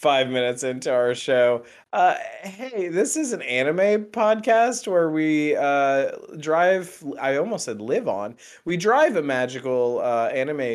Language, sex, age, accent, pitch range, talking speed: English, male, 20-39, American, 120-165 Hz, 150 wpm